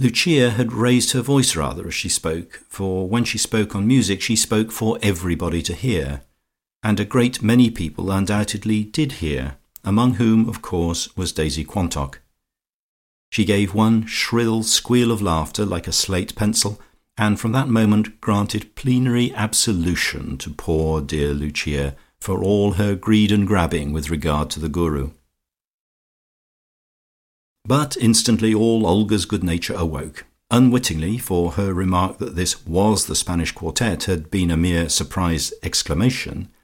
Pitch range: 85-115 Hz